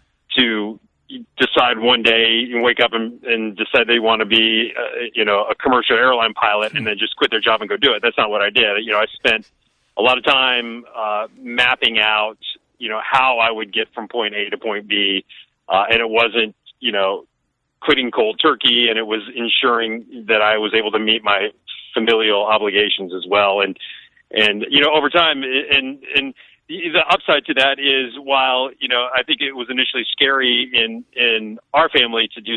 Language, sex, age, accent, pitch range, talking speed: English, male, 40-59, American, 110-125 Hz, 205 wpm